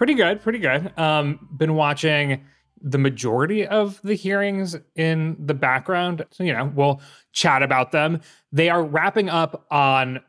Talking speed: 155 wpm